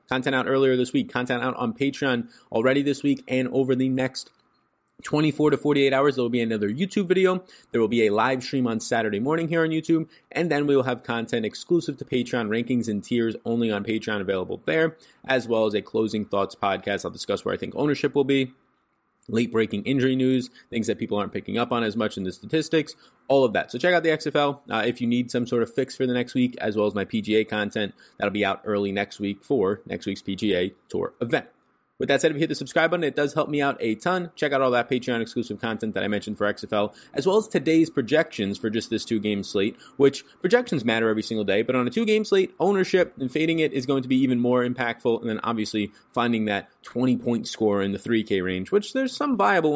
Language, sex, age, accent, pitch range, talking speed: English, male, 20-39, American, 110-145 Hz, 235 wpm